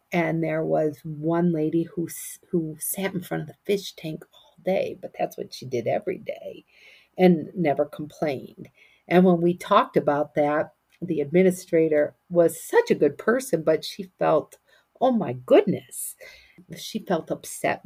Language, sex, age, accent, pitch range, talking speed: English, female, 50-69, American, 170-200 Hz, 160 wpm